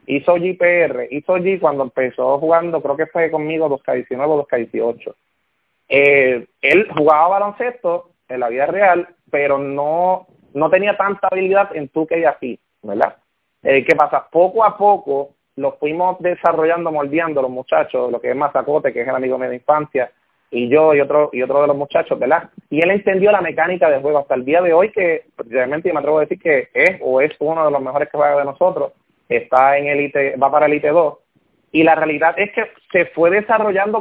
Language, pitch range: English, 140-190 Hz